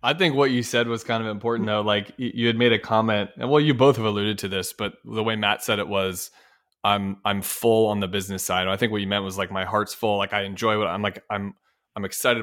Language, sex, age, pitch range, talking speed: English, male, 20-39, 100-120 Hz, 275 wpm